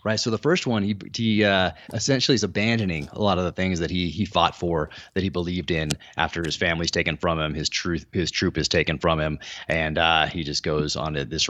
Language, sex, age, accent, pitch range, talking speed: English, male, 30-49, American, 75-95 Hz, 245 wpm